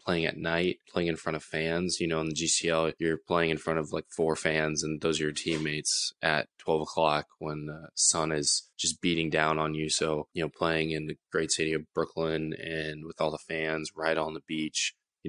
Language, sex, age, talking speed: English, male, 20-39, 230 wpm